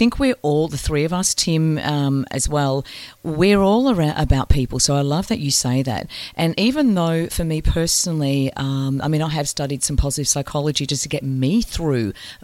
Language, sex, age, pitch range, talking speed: English, female, 40-59, 140-180 Hz, 210 wpm